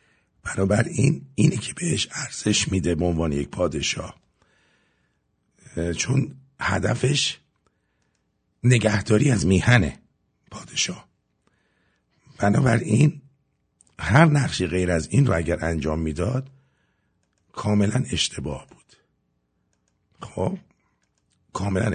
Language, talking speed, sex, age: English, 90 wpm, male, 60-79